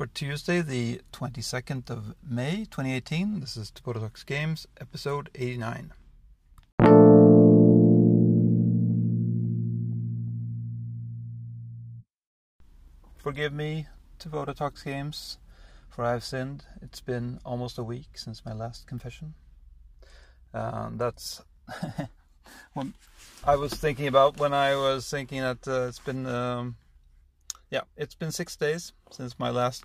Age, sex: 30-49, male